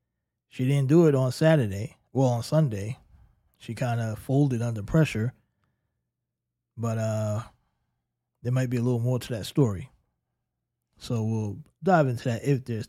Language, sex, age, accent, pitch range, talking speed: English, male, 20-39, American, 120-160 Hz, 155 wpm